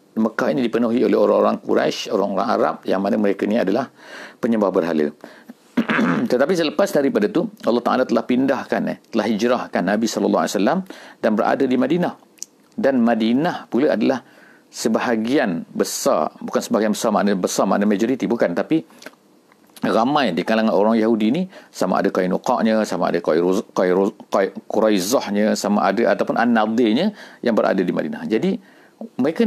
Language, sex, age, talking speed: English, male, 50-69, 150 wpm